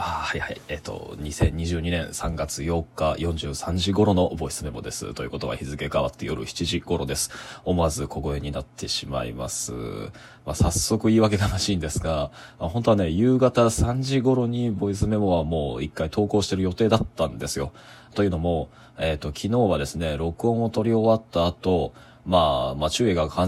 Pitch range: 80-105 Hz